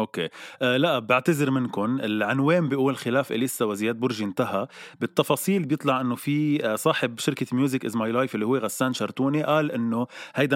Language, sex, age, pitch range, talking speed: Arabic, male, 20-39, 105-140 Hz, 165 wpm